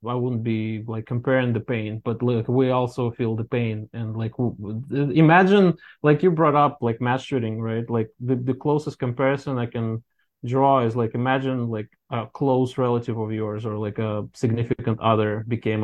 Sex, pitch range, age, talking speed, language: male, 110-130 Hz, 20-39, 180 wpm, English